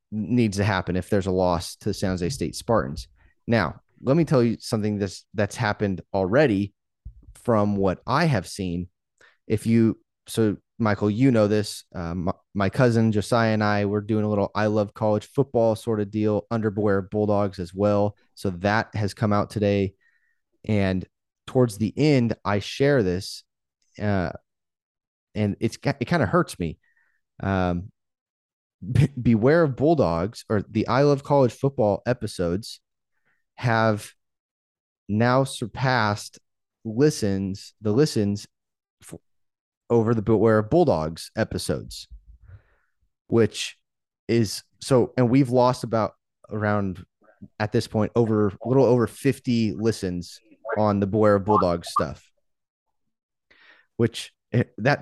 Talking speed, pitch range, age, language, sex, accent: 140 wpm, 100-120 Hz, 30-49, English, male, American